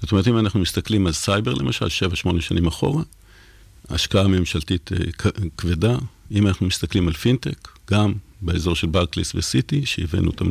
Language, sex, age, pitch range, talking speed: Hebrew, male, 50-69, 85-105 Hz, 155 wpm